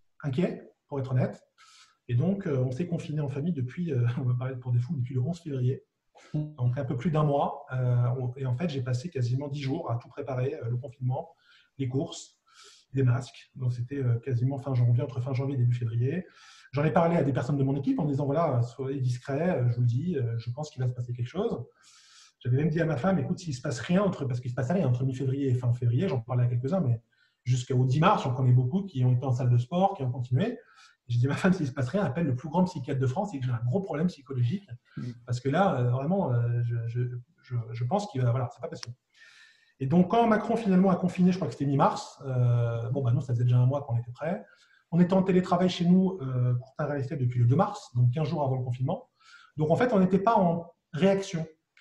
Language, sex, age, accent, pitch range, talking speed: French, male, 30-49, French, 125-175 Hz, 255 wpm